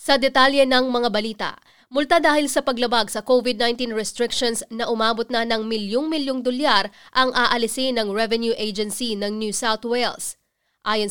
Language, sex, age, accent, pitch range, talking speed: English, female, 20-39, Filipino, 215-255 Hz, 150 wpm